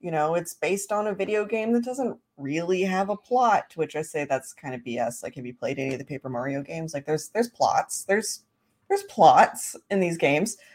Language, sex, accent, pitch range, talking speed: English, female, American, 150-210 Hz, 230 wpm